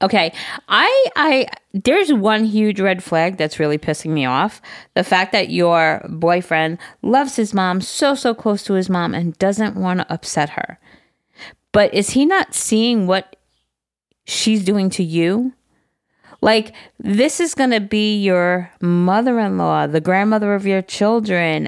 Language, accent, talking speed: English, American, 155 wpm